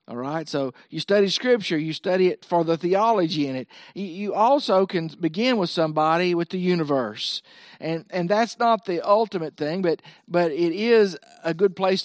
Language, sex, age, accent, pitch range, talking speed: English, male, 50-69, American, 165-215 Hz, 185 wpm